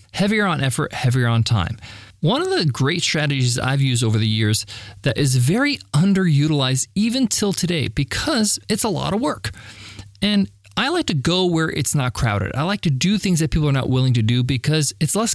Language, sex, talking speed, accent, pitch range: English, male, 205 wpm, American, 120-185 Hz